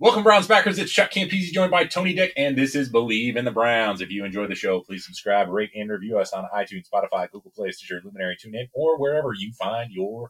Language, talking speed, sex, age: English, 240 wpm, male, 30-49